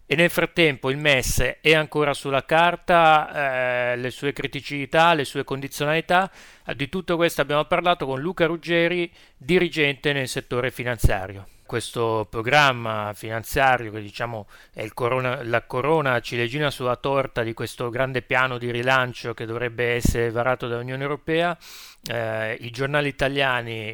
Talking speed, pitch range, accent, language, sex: 145 wpm, 120-145 Hz, native, Italian, male